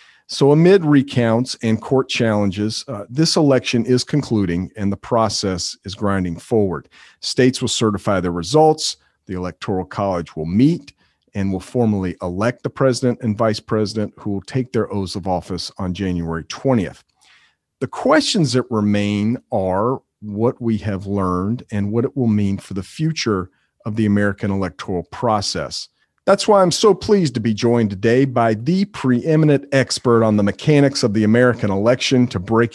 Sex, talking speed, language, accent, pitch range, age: male, 165 wpm, English, American, 100-130 Hz, 40-59